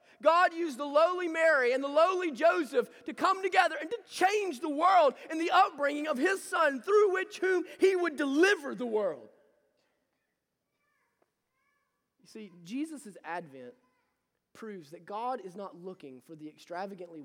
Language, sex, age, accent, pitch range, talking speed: English, male, 30-49, American, 270-370 Hz, 155 wpm